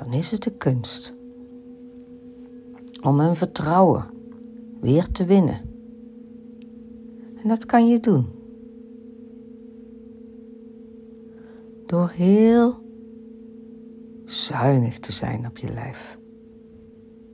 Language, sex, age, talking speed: Dutch, female, 60-79, 85 wpm